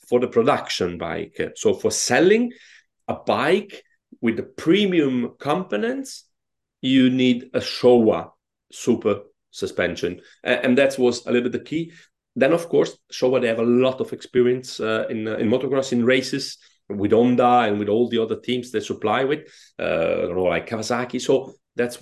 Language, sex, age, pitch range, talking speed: English, male, 40-59, 100-140 Hz, 165 wpm